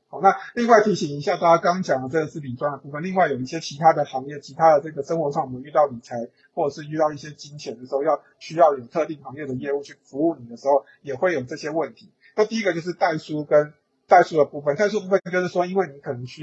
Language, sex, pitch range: Chinese, male, 140-170 Hz